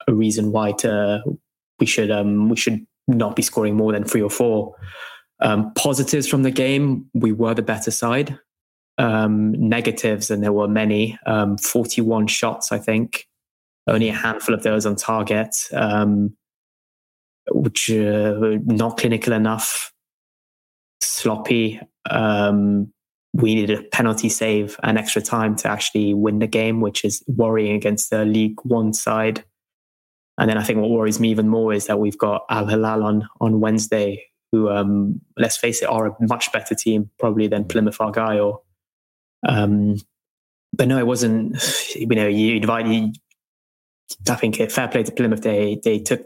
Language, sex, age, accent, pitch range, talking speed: English, male, 20-39, British, 105-110 Hz, 165 wpm